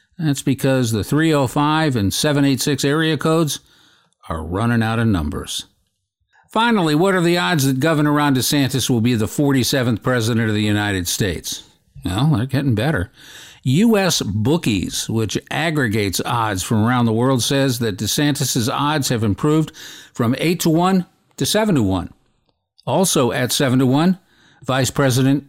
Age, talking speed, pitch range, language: 50-69, 155 wpm, 110-145 Hz, English